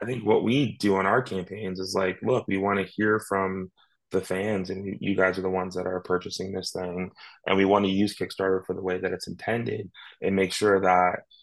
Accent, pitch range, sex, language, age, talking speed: American, 90-105 Hz, male, English, 20-39, 235 wpm